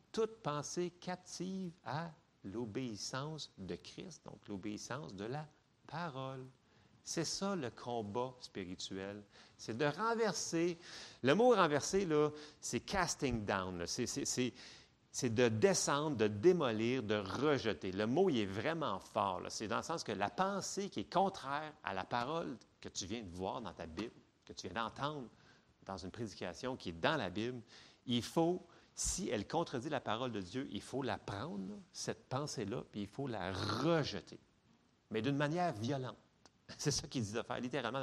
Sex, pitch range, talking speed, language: male, 110-160 Hz, 175 wpm, French